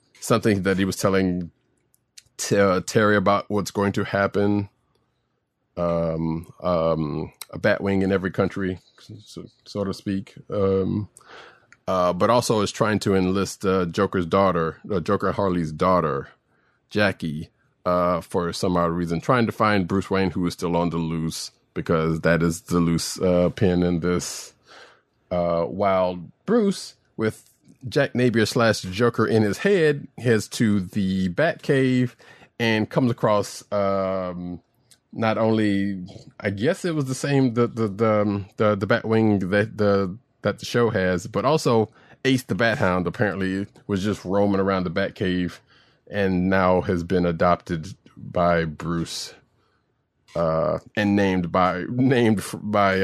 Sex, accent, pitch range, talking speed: male, American, 90-115 Hz, 145 wpm